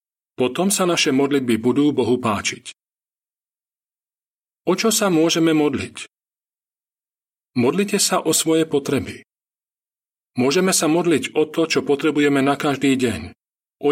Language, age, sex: Slovak, 40-59, male